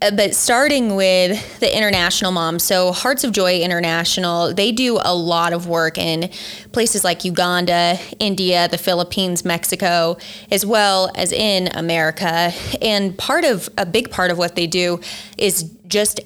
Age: 20-39